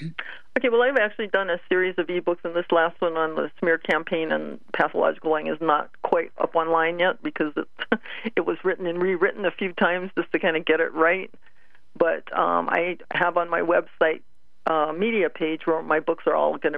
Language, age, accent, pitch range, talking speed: English, 50-69, American, 155-180 Hz, 210 wpm